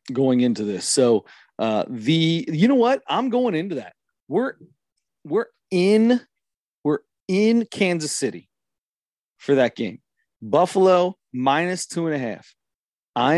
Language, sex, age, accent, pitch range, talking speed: English, male, 40-59, American, 125-165 Hz, 135 wpm